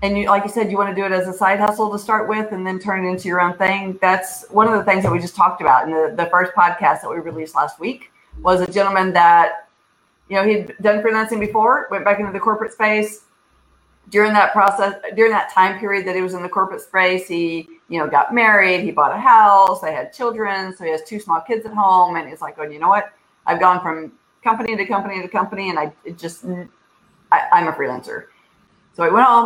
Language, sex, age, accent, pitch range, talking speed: English, female, 30-49, American, 170-205 Hz, 240 wpm